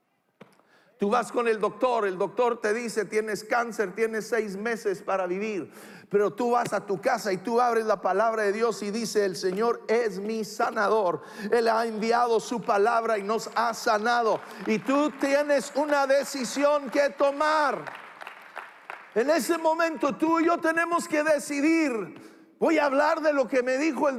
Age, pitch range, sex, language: 50-69, 225-310 Hz, male, English